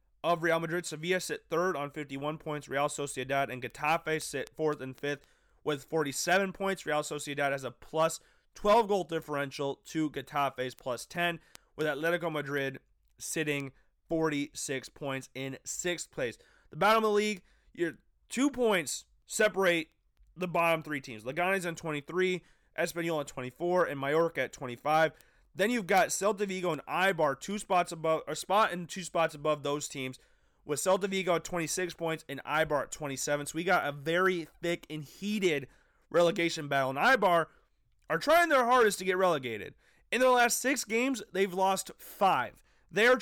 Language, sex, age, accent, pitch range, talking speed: English, male, 30-49, American, 145-190 Hz, 165 wpm